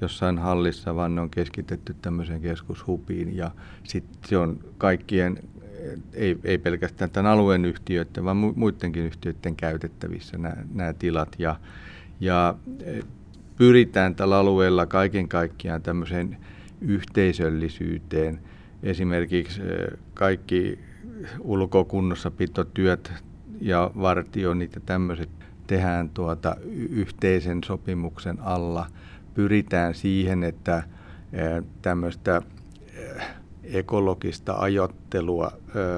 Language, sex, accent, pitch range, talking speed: Finnish, male, native, 85-95 Hz, 90 wpm